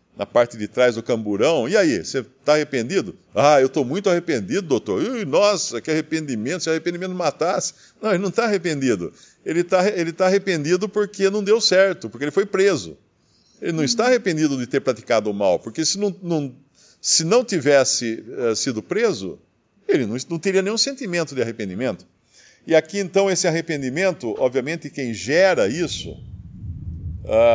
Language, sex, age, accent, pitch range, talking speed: English, male, 50-69, Brazilian, 115-185 Hz, 170 wpm